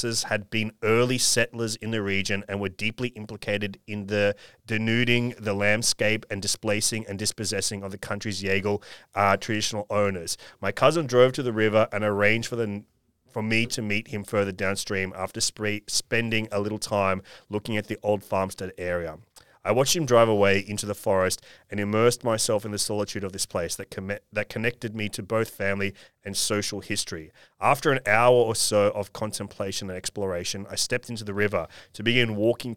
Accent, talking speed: Australian, 185 wpm